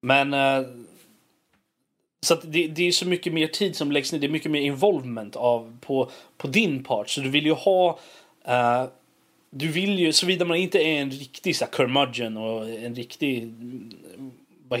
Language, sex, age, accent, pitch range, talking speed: Swedish, male, 30-49, native, 125-160 Hz, 185 wpm